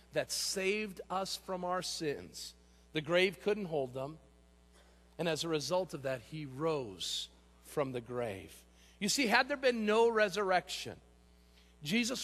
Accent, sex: American, male